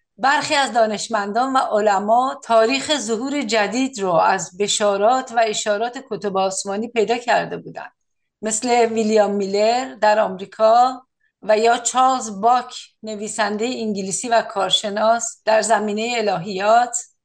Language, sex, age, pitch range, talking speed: Persian, female, 50-69, 210-255 Hz, 120 wpm